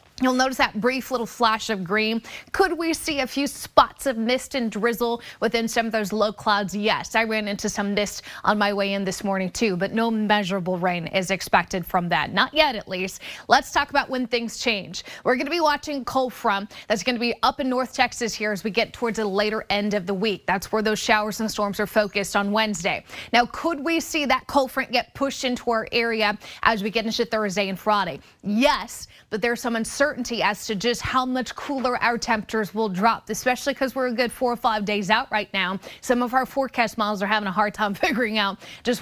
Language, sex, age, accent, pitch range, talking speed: English, female, 20-39, American, 205-250 Hz, 230 wpm